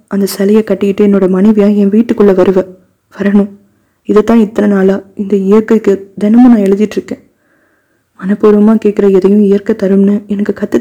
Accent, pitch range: native, 185-230 Hz